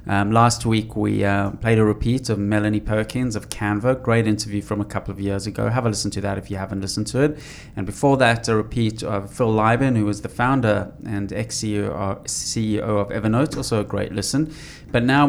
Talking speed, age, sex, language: 210 wpm, 20-39, male, English